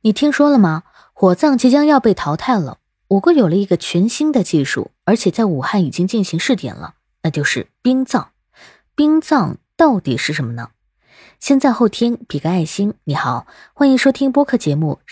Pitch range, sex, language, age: 165-255 Hz, female, Chinese, 20-39